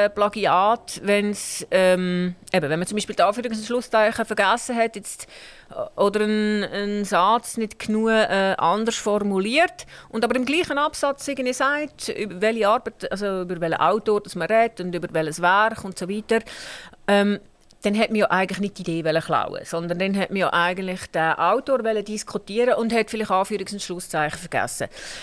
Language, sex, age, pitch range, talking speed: German, female, 40-59, 175-215 Hz, 180 wpm